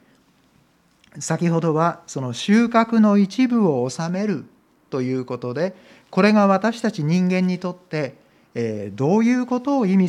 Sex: male